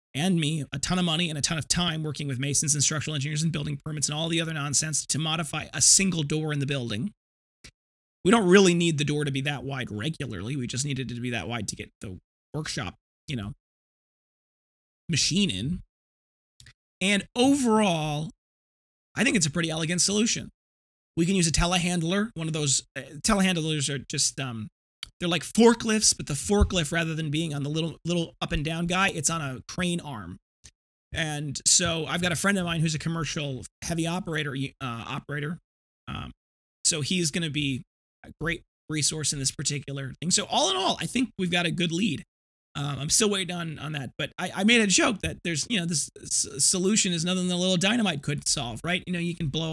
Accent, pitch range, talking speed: American, 140-175 Hz, 215 wpm